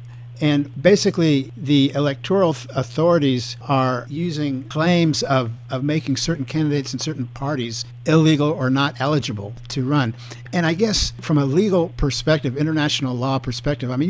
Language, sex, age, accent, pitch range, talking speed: English, male, 50-69, American, 120-145 Hz, 145 wpm